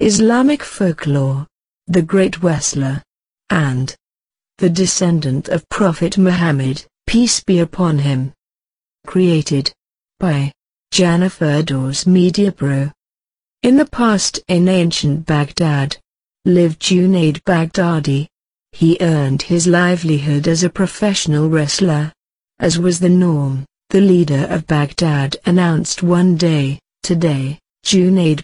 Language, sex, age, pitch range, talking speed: English, female, 50-69, 150-185 Hz, 110 wpm